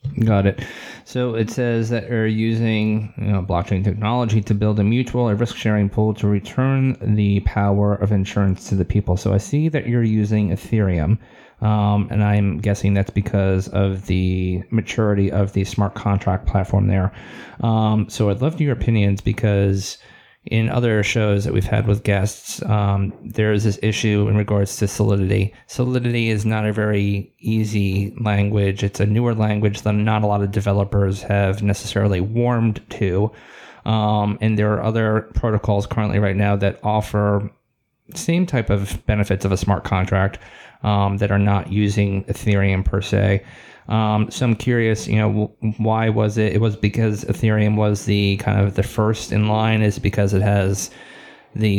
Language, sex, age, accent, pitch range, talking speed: English, male, 30-49, American, 100-110 Hz, 175 wpm